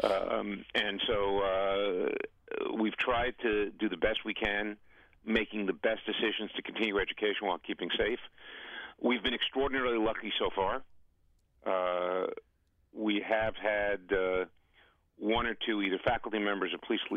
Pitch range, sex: 90-110 Hz, male